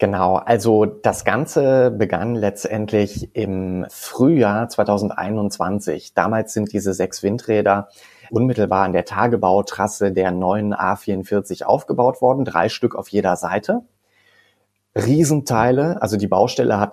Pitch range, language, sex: 100-115 Hz, German, male